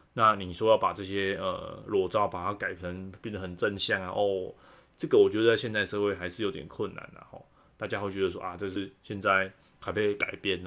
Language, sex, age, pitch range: Chinese, male, 20-39, 95-105 Hz